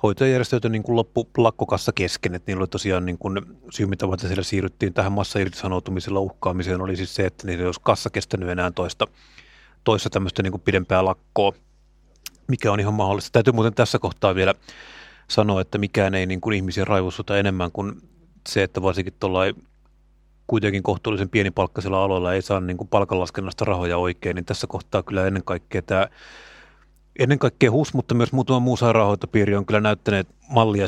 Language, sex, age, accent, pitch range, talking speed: Finnish, male, 30-49, native, 95-115 Hz, 165 wpm